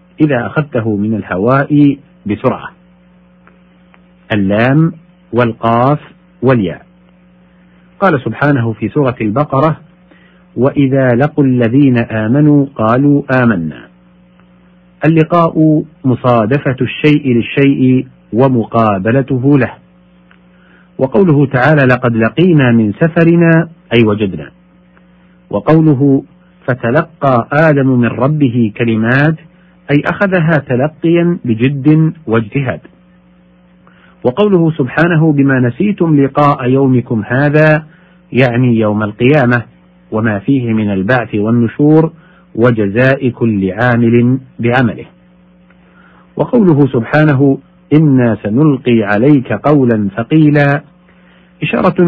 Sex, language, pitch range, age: male, Arabic, 110-155 Hz, 50-69